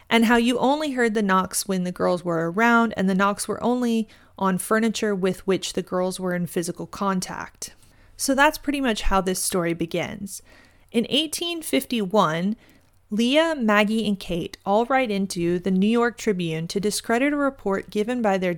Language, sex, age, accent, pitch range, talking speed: English, female, 30-49, American, 185-230 Hz, 180 wpm